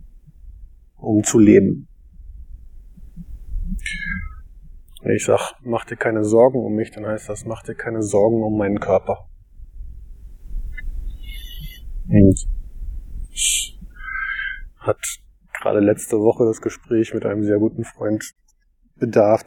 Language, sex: German, male